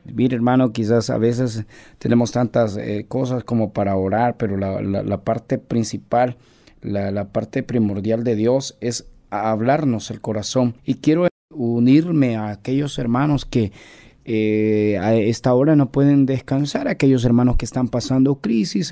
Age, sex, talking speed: 30-49, male, 150 wpm